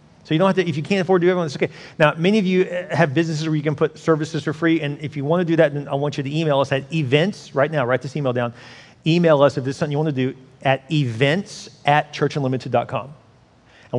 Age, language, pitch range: 40-59, English, 130-155 Hz